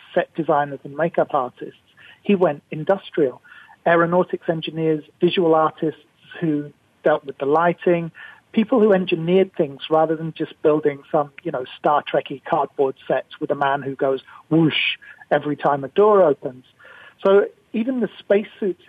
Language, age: English, 40-59